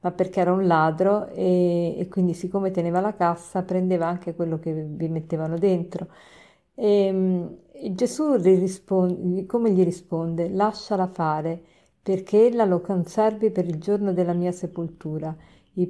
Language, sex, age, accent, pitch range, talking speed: Italian, female, 50-69, native, 175-205 Hz, 145 wpm